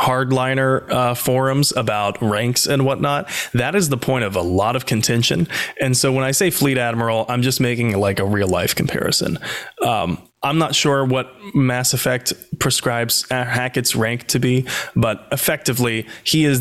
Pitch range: 115-135 Hz